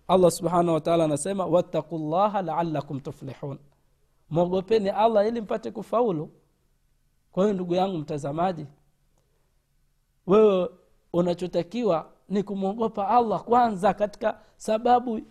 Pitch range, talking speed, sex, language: 145-200 Hz, 105 wpm, male, Swahili